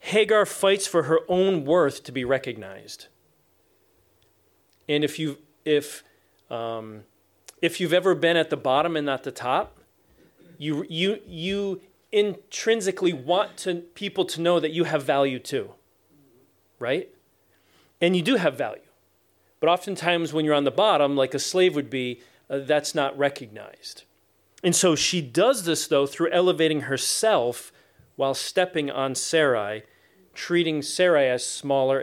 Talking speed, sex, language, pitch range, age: 145 wpm, male, English, 135-175 Hz, 40-59